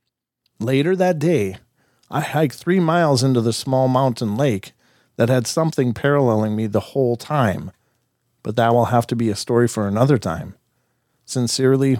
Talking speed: 160 wpm